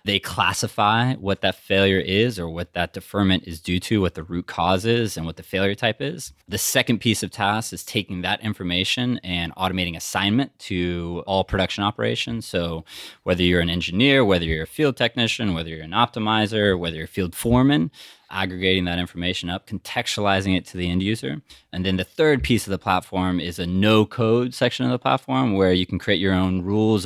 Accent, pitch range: American, 90-105 Hz